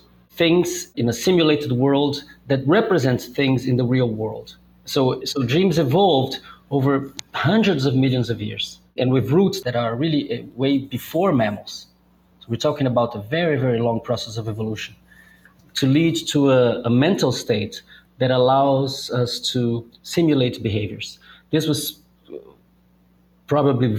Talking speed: 145 wpm